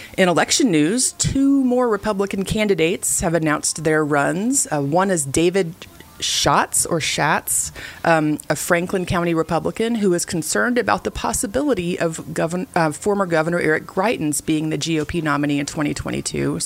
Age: 30-49